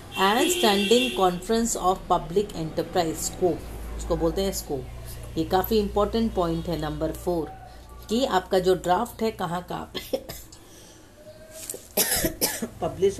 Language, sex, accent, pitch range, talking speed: English, female, Indian, 165-230 Hz, 120 wpm